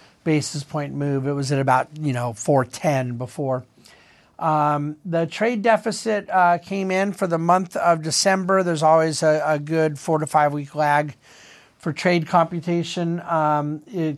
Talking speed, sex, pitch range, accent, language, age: 160 wpm, male, 155-190 Hz, American, English, 50-69